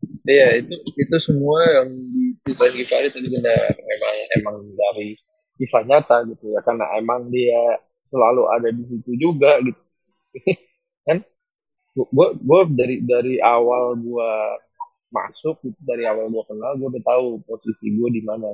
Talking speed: 150 wpm